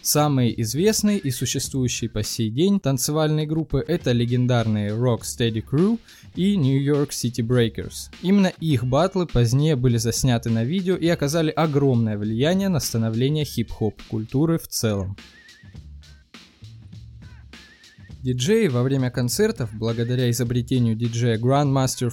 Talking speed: 120 wpm